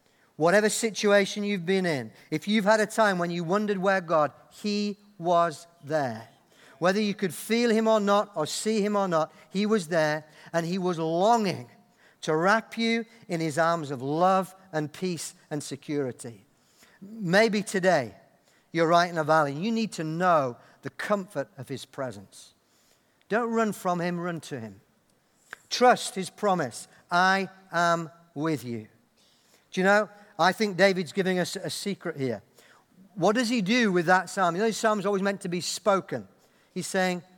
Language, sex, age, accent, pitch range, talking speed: English, male, 50-69, British, 160-210 Hz, 175 wpm